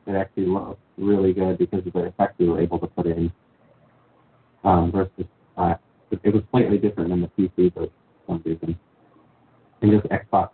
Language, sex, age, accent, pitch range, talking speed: English, male, 40-59, American, 90-110 Hz, 175 wpm